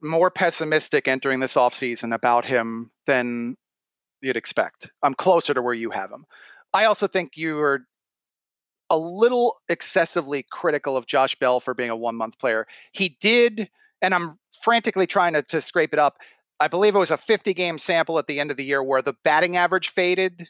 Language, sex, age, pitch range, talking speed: English, male, 40-59, 145-185 Hz, 185 wpm